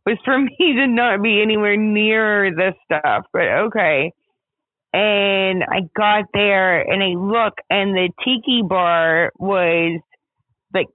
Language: English